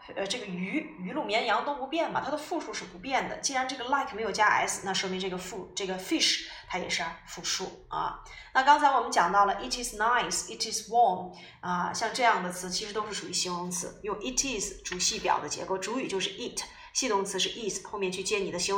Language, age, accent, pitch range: Chinese, 20-39, native, 190-265 Hz